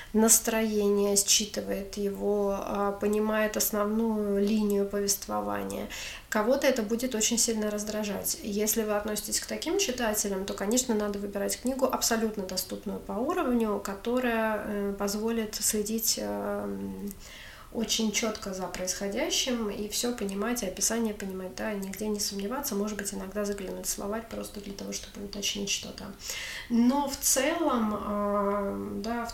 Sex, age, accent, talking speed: female, 30-49, native, 125 wpm